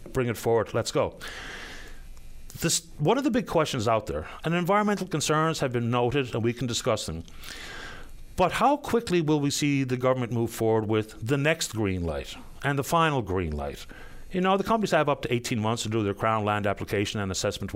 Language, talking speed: English, 205 wpm